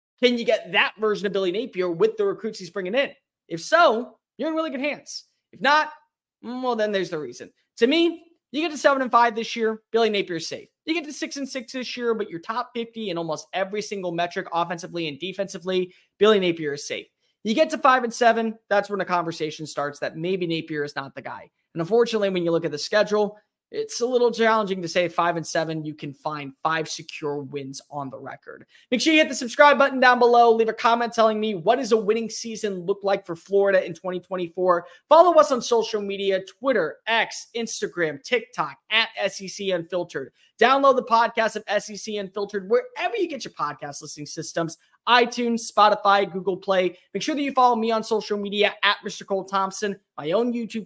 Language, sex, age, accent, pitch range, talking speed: English, male, 20-39, American, 175-240 Hz, 210 wpm